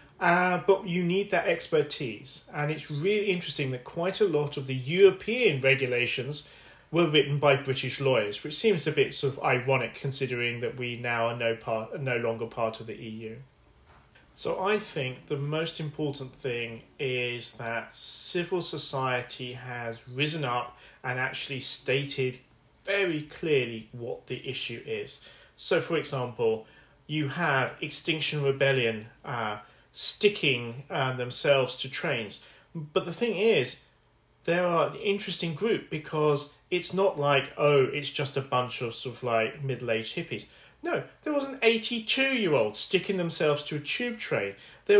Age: 40-59